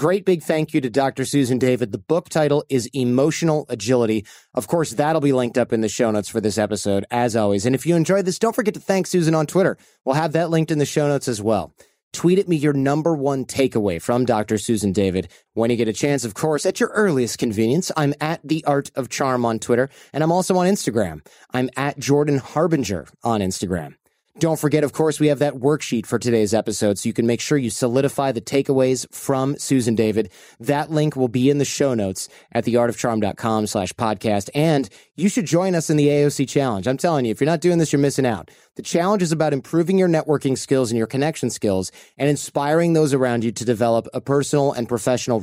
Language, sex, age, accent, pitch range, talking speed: English, male, 30-49, American, 115-155 Hz, 225 wpm